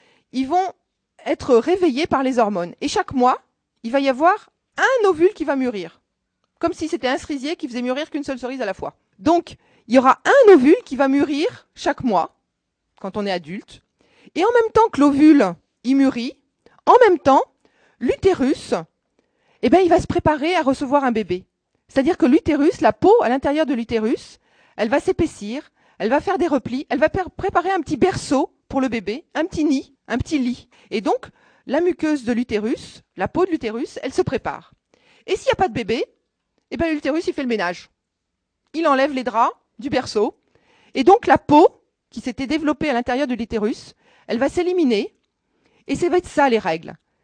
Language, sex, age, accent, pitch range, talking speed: French, female, 40-59, French, 255-355 Hz, 200 wpm